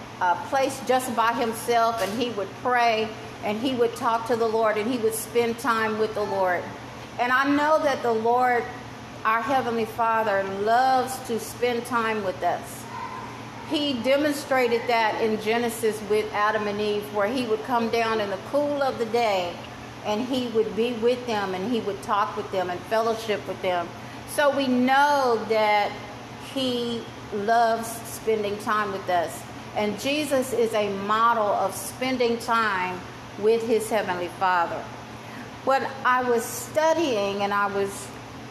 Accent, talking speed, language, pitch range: American, 160 wpm, English, 190-240 Hz